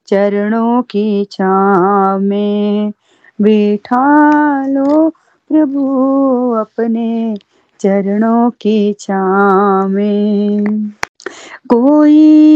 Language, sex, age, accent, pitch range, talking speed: Hindi, female, 30-49, native, 210-305 Hz, 60 wpm